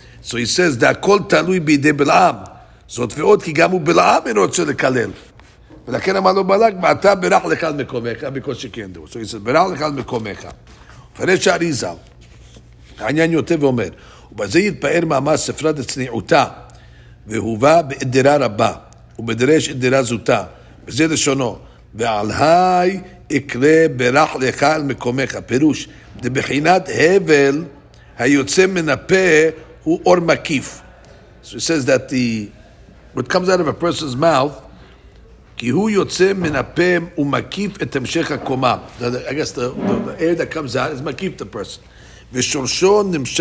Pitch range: 120-165 Hz